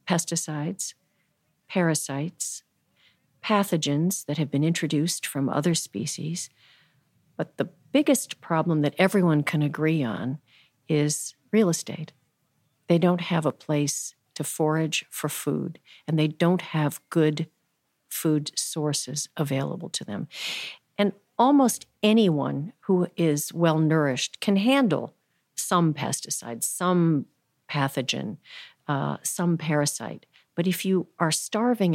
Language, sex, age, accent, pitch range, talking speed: English, female, 50-69, American, 150-180 Hz, 115 wpm